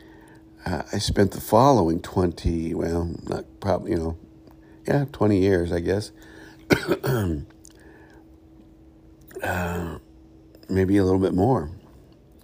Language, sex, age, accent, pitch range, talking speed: English, male, 50-69, American, 80-95 Hz, 105 wpm